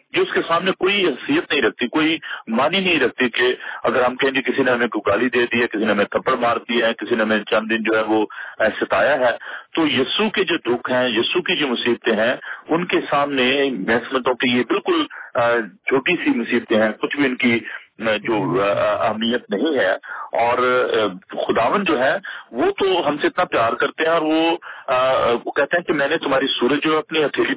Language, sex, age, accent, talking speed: English, male, 40-59, Indian, 210 wpm